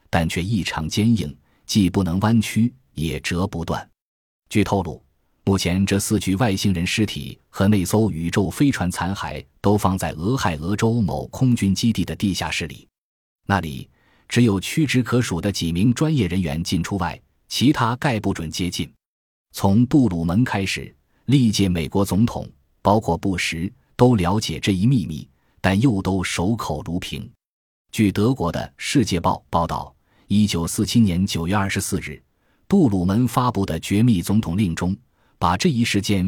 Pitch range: 85-115 Hz